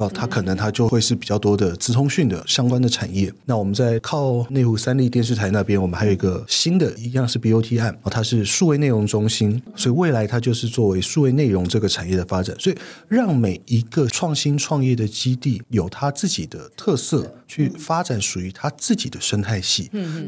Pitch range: 105-150 Hz